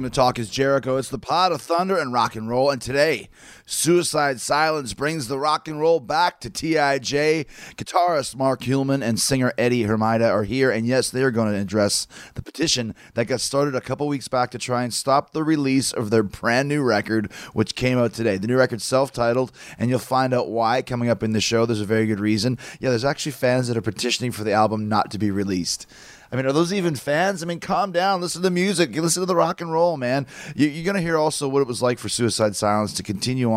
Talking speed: 235 wpm